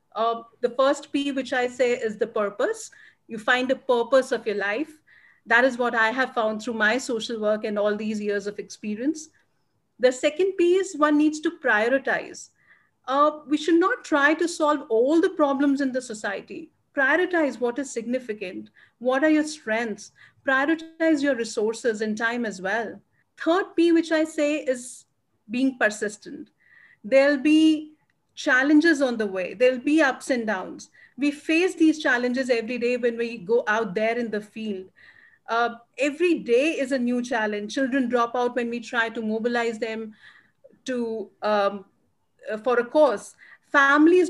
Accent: Indian